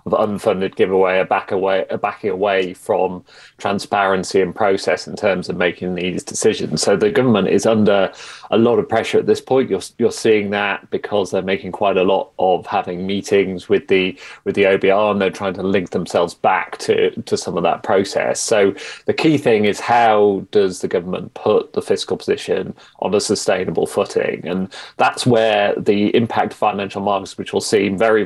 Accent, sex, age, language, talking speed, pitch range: British, male, 30-49, English, 195 wpm, 95-110 Hz